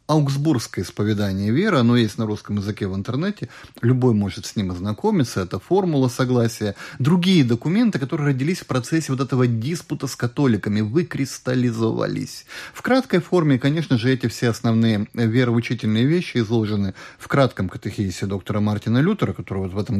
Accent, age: native, 30-49